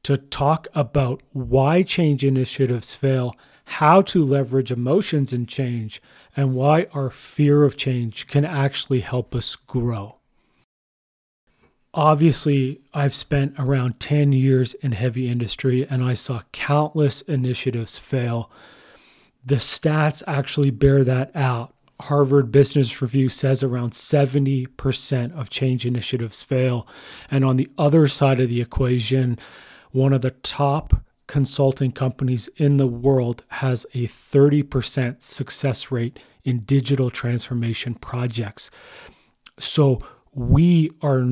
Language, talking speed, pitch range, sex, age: English, 120 wpm, 125-140 Hz, male, 30-49